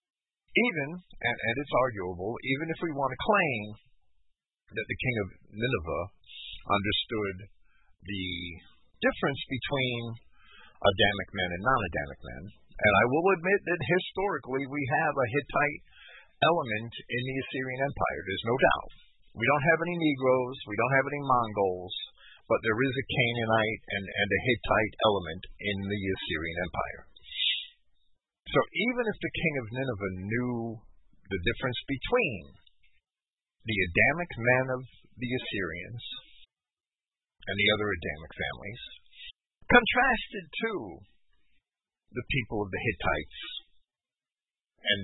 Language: English